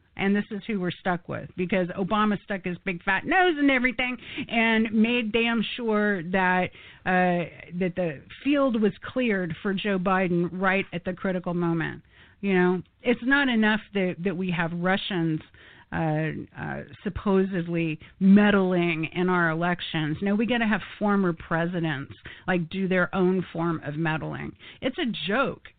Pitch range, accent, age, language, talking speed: 170-215 Hz, American, 50-69, English, 160 wpm